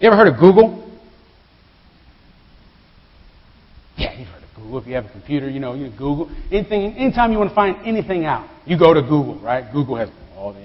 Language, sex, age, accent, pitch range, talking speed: English, male, 40-59, American, 130-185 Hz, 205 wpm